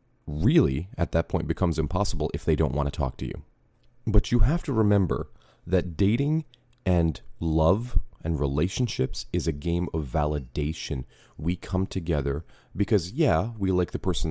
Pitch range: 75-95 Hz